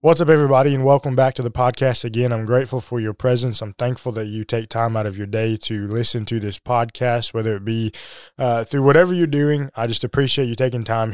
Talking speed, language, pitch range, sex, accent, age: 235 wpm, English, 115-135 Hz, male, American, 20-39